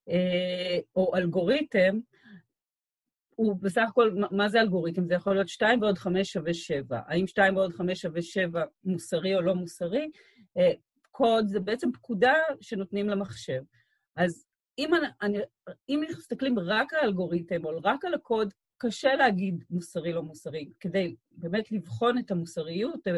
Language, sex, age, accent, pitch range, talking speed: Hebrew, female, 40-59, native, 175-220 Hz, 135 wpm